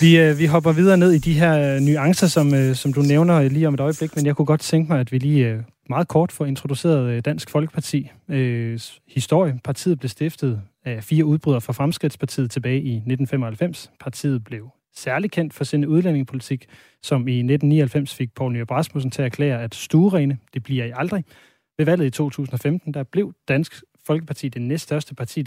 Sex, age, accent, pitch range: male, 30-49, native, 130-155 Hz